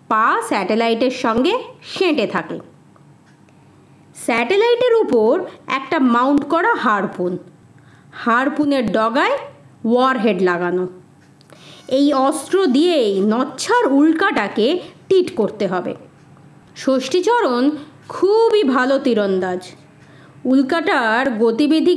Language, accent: Bengali, native